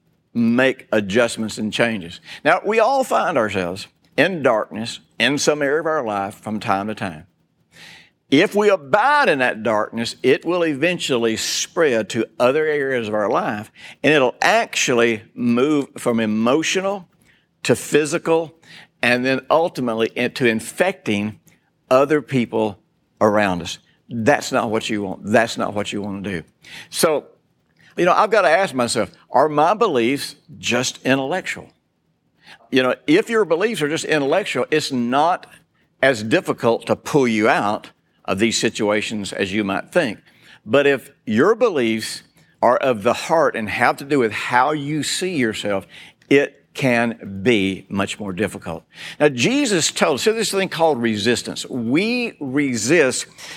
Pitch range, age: 110-160 Hz, 60-79